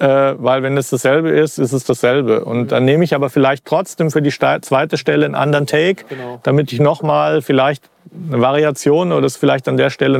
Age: 40-59